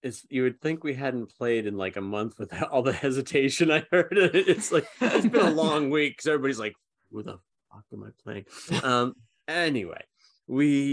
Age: 30-49